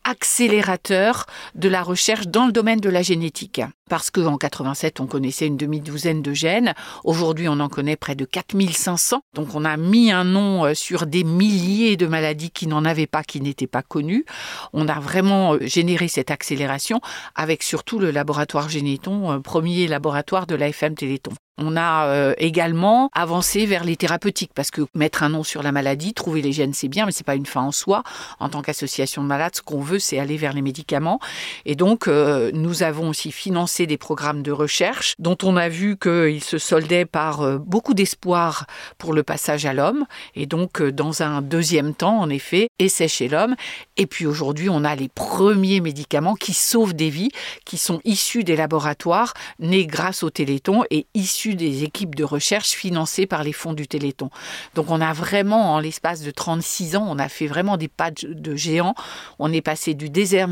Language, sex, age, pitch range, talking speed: French, female, 60-79, 150-190 Hz, 190 wpm